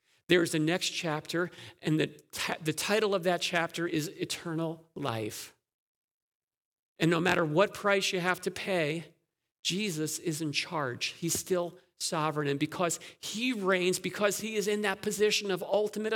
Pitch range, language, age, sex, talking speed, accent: 160-195 Hz, Dutch, 40-59, male, 155 wpm, American